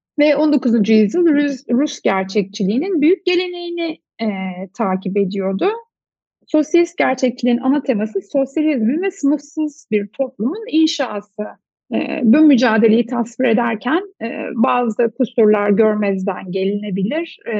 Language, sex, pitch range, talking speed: Turkish, female, 205-285 Hz, 100 wpm